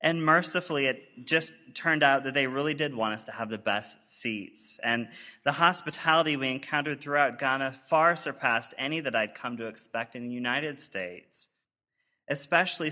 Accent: American